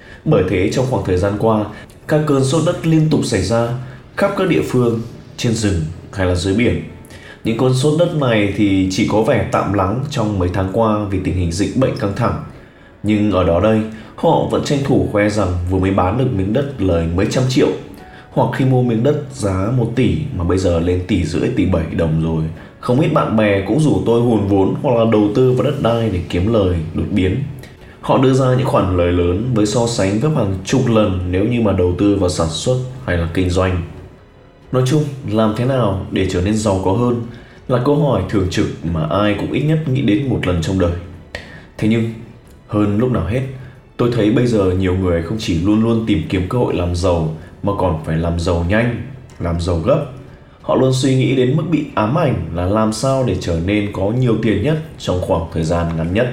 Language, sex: Vietnamese, male